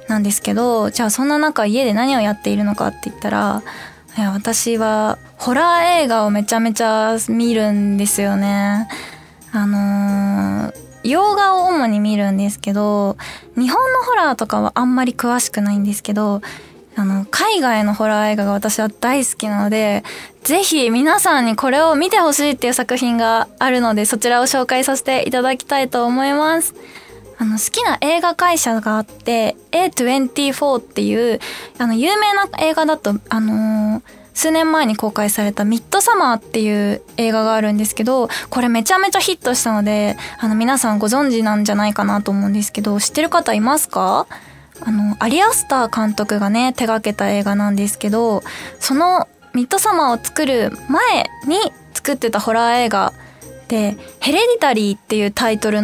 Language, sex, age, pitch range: Japanese, female, 10-29, 210-270 Hz